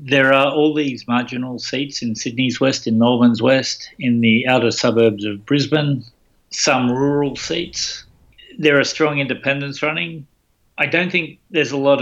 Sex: male